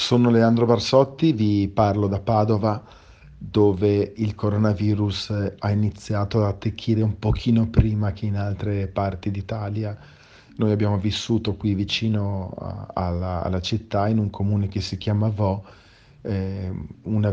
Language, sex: Italian, male